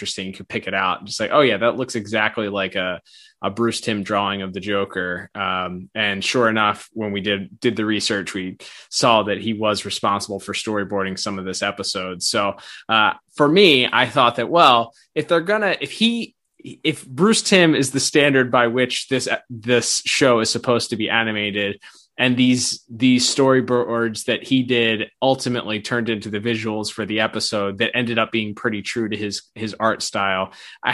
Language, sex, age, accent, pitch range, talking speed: English, male, 20-39, American, 105-125 Hz, 195 wpm